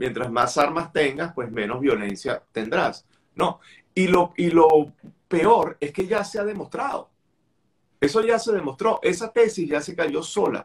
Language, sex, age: Spanish, male, 50-69